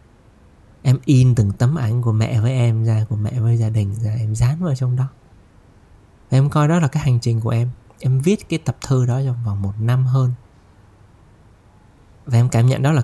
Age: 20-39